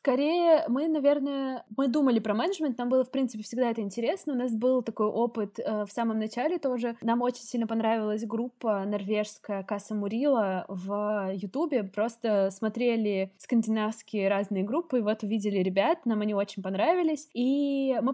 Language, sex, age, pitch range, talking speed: Russian, female, 20-39, 210-250 Hz, 160 wpm